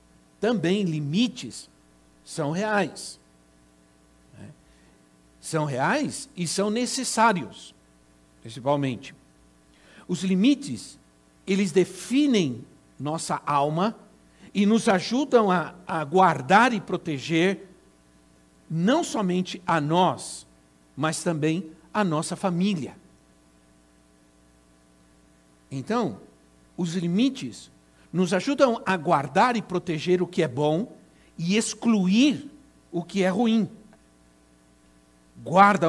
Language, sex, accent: Portuguese, male, Brazilian